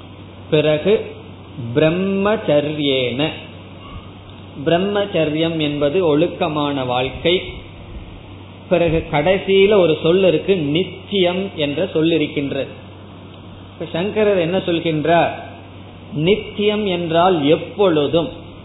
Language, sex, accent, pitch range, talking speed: Tamil, male, native, 120-185 Hz, 60 wpm